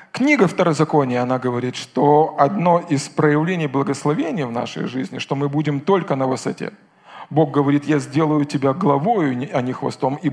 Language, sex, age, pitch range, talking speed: Russian, male, 40-59, 145-205 Hz, 165 wpm